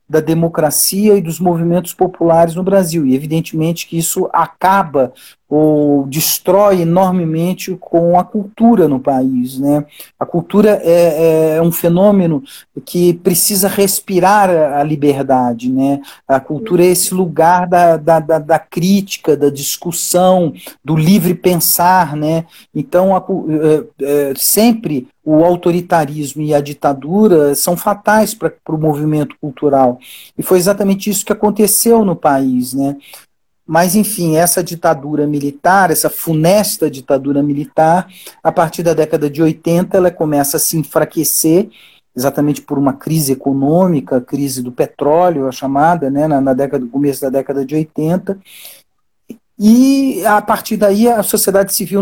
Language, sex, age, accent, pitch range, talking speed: Portuguese, male, 40-59, Brazilian, 150-195 Hz, 135 wpm